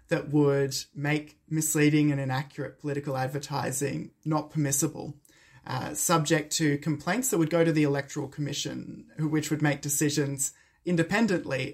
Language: English